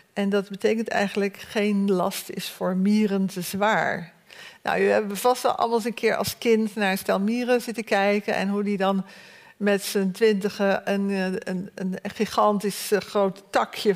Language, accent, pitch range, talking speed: Dutch, Dutch, 190-220 Hz, 170 wpm